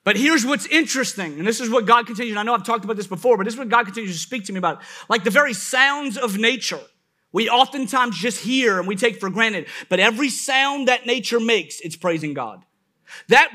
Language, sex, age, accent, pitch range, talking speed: English, male, 30-49, American, 170-260 Hz, 240 wpm